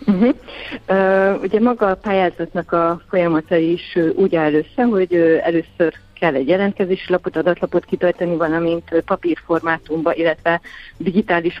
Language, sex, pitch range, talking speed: Hungarian, female, 160-190 Hz, 115 wpm